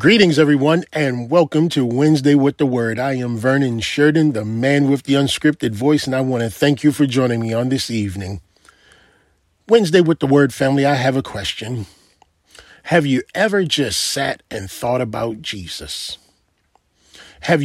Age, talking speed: 40-59, 170 wpm